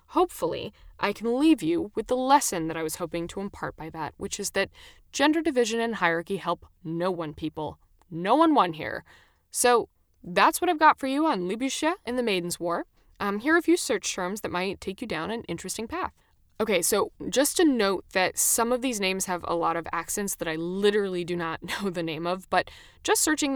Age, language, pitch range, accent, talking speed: 10-29, English, 175-235 Hz, American, 220 wpm